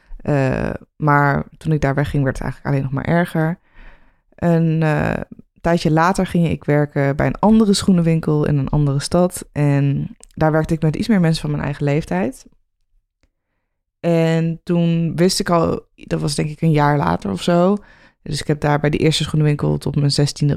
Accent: Dutch